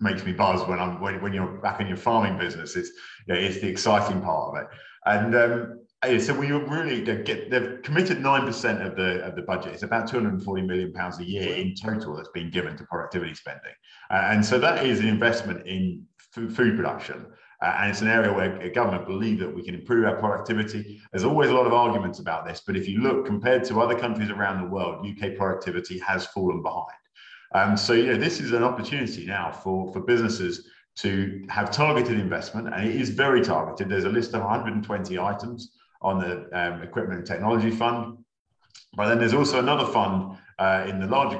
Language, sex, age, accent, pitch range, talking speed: English, male, 40-59, British, 95-120 Hz, 210 wpm